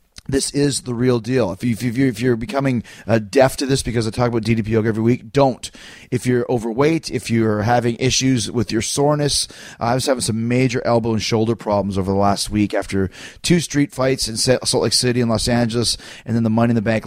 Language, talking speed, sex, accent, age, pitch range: English, 235 wpm, male, American, 30-49, 110-130 Hz